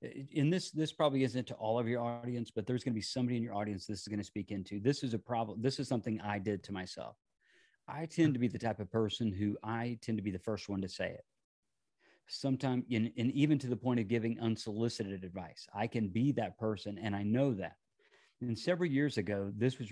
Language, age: English, 40-59